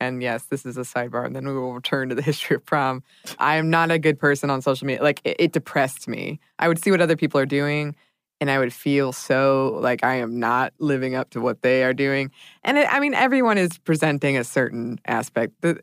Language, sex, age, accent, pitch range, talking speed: English, female, 20-39, American, 135-180 Hz, 240 wpm